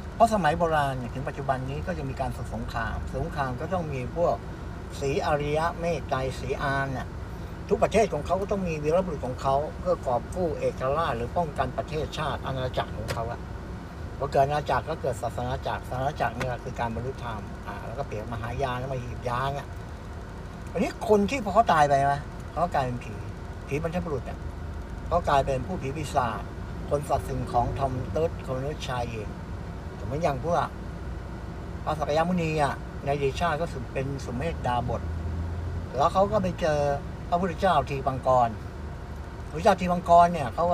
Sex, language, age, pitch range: male, Thai, 60-79, 100-145 Hz